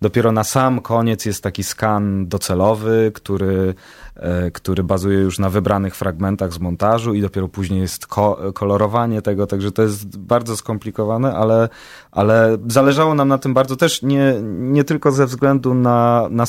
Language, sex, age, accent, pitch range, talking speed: Polish, male, 30-49, native, 95-115 Hz, 160 wpm